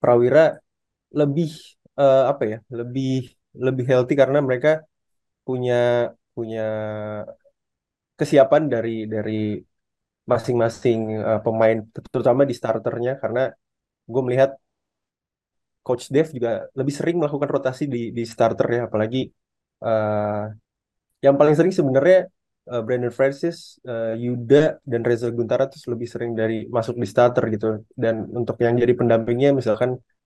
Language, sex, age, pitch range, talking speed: Indonesian, male, 20-39, 115-135 Hz, 120 wpm